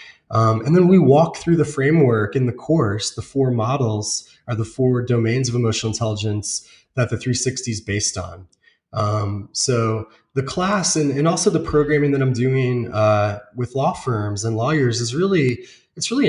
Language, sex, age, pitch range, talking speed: English, male, 20-39, 110-140 Hz, 180 wpm